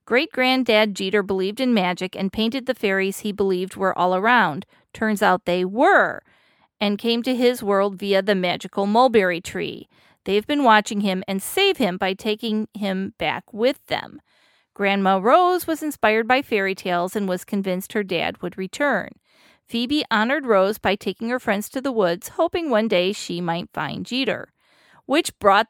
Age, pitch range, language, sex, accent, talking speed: 40-59, 190-250 Hz, English, female, American, 175 wpm